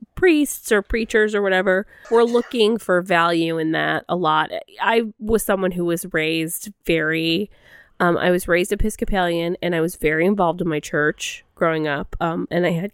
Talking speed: 180 wpm